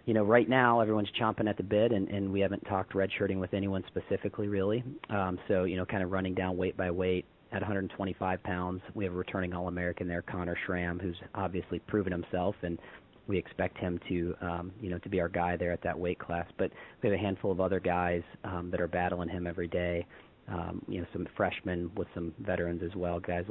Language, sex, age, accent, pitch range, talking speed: English, male, 40-59, American, 85-100 Hz, 225 wpm